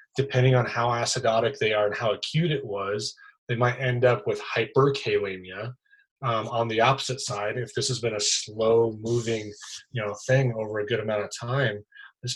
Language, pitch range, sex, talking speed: English, 105-130 Hz, male, 190 wpm